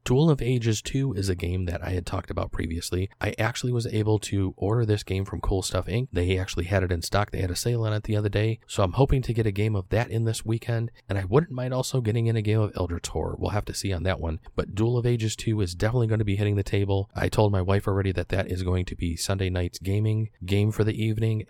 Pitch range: 95-115 Hz